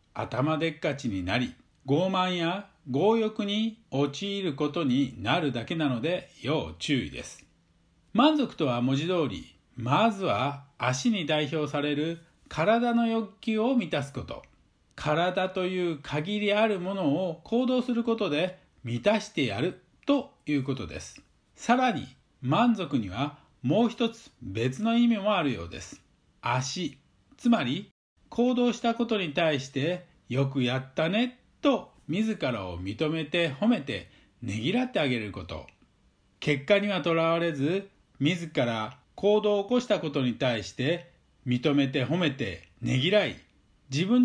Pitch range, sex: 135-220 Hz, male